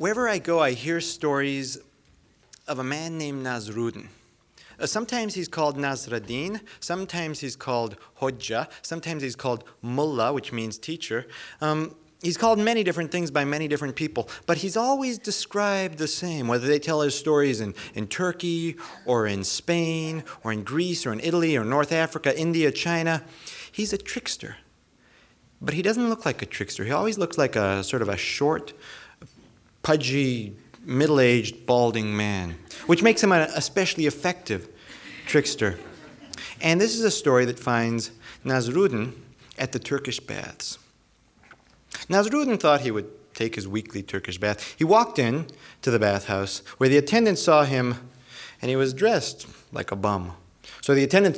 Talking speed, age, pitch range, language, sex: 160 wpm, 30-49, 120-170 Hz, English, male